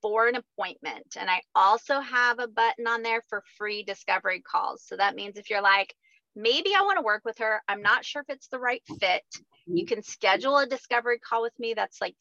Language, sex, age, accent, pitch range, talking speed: English, female, 30-49, American, 205-270 Hz, 225 wpm